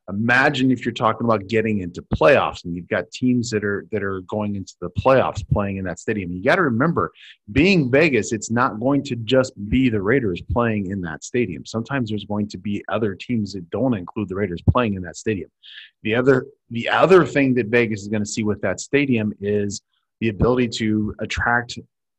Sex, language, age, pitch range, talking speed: male, English, 30-49, 100-125 Hz, 210 wpm